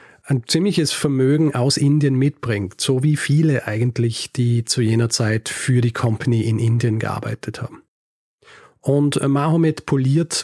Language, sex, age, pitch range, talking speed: German, male, 40-59, 120-140 Hz, 140 wpm